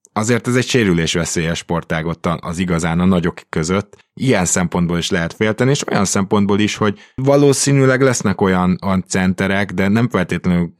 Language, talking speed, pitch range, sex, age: Hungarian, 160 wpm, 85-110 Hz, male, 20-39